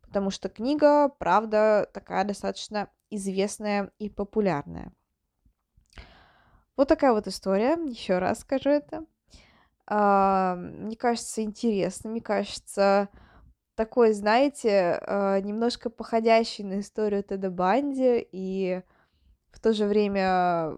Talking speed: 100 wpm